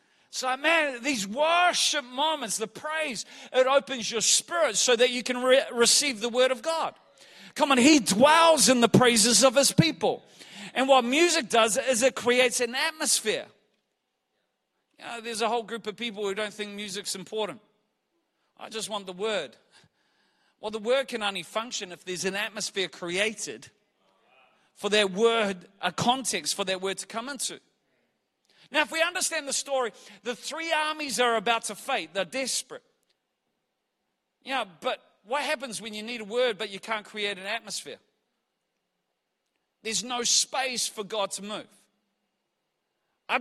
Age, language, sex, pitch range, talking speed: 40-59, English, male, 200-260 Hz, 160 wpm